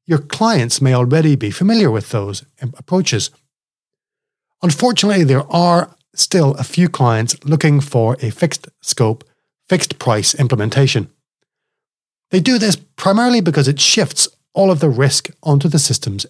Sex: male